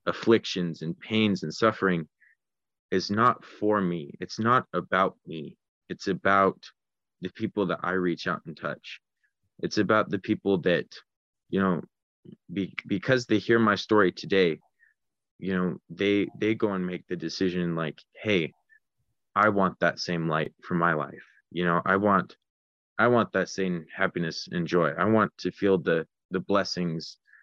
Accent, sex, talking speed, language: American, male, 160 wpm, English